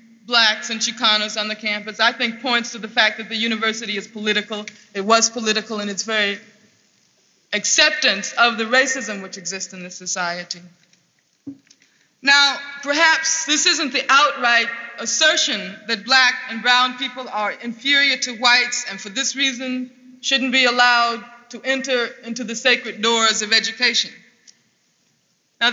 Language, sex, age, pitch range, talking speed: English, female, 20-39, 220-265 Hz, 150 wpm